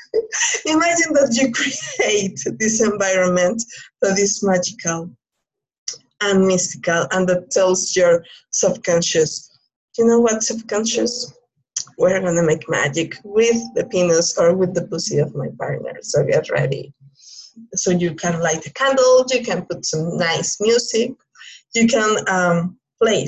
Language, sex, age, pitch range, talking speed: English, female, 20-39, 175-240 Hz, 135 wpm